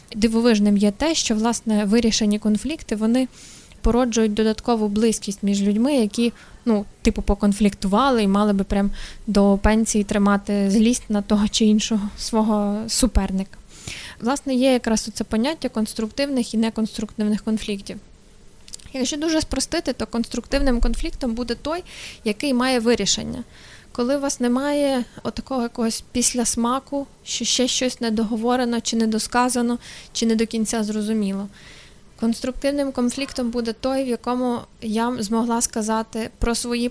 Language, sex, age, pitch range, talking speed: Ukrainian, female, 20-39, 215-245 Hz, 130 wpm